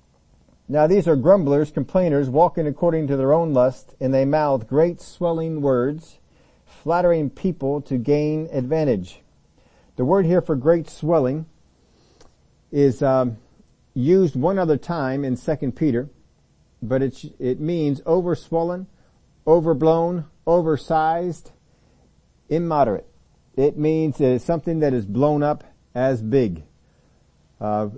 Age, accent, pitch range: 50-69, American, 125-160 Hz